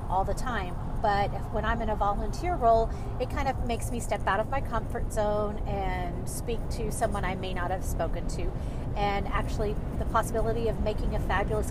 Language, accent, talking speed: English, American, 205 wpm